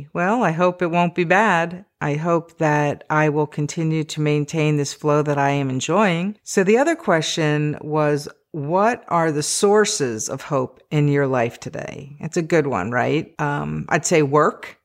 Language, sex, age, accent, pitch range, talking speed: English, female, 50-69, American, 150-180 Hz, 180 wpm